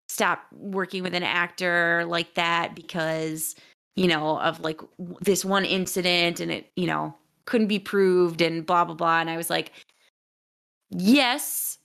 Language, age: English, 20-39